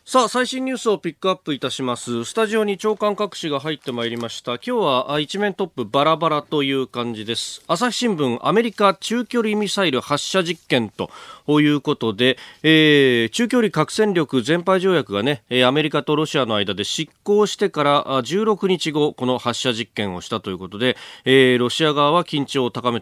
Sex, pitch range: male, 110-165 Hz